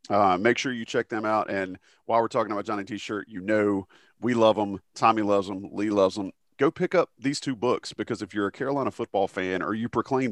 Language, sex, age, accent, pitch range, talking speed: English, male, 40-59, American, 100-120 Hz, 240 wpm